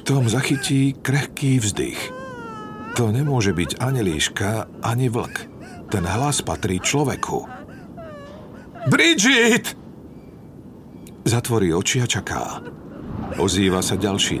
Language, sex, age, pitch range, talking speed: Slovak, male, 50-69, 95-115 Hz, 95 wpm